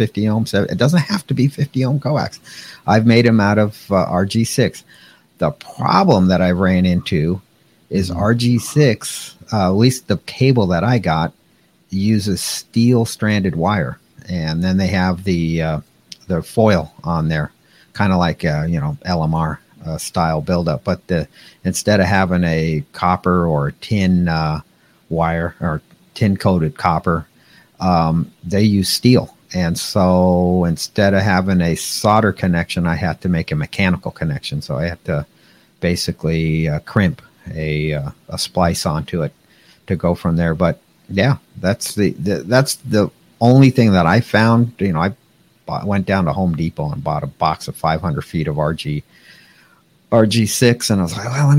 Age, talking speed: 50-69, 165 wpm